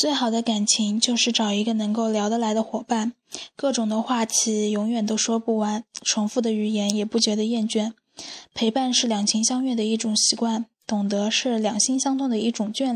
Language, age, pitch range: Chinese, 10-29, 215-240 Hz